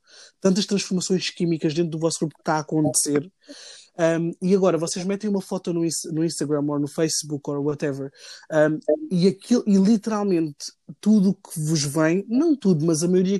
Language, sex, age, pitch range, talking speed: Portuguese, male, 20-39, 155-195 Hz, 165 wpm